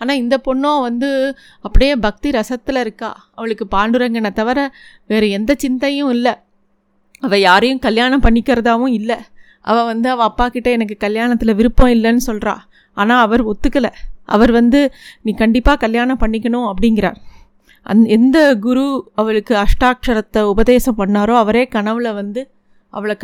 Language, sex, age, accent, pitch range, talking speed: Tamil, female, 30-49, native, 220-260 Hz, 130 wpm